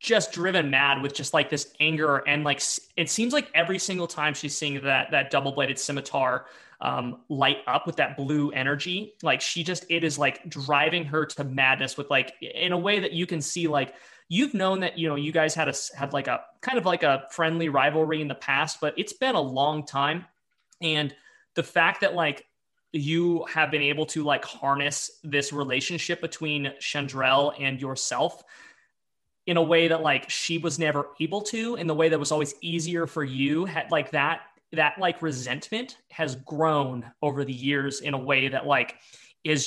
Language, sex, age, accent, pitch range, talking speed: English, male, 20-39, American, 140-170 Hz, 195 wpm